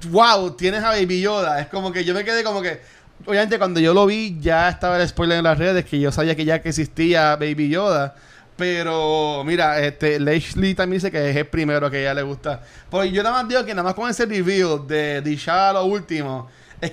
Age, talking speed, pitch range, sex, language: 20-39, 235 wpm, 160-210 Hz, male, Spanish